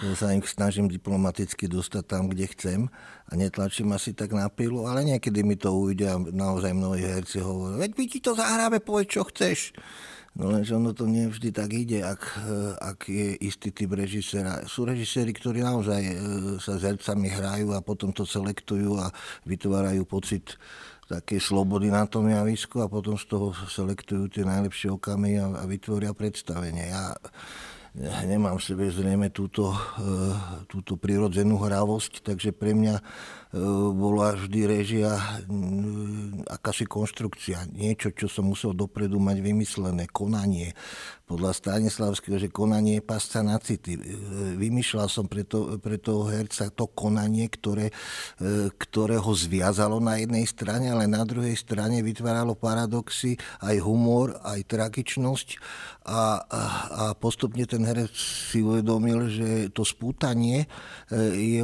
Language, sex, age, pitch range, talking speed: Slovak, male, 50-69, 100-110 Hz, 145 wpm